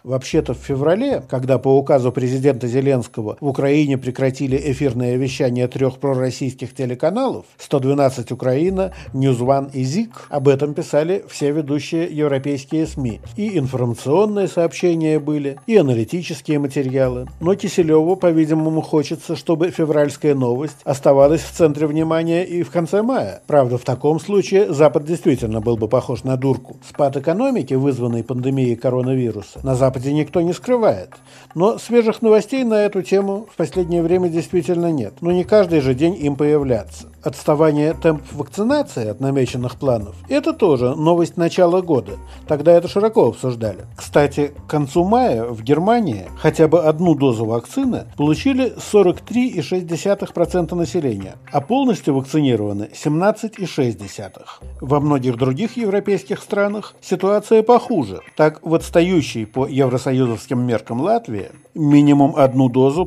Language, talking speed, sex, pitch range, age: Russian, 130 wpm, male, 130-175 Hz, 50-69